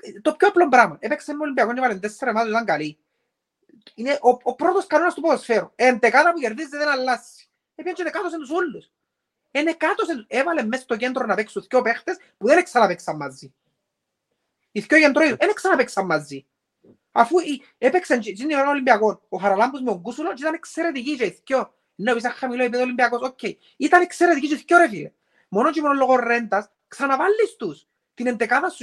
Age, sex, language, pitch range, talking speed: 30-49, male, Greek, 215-310 Hz, 40 wpm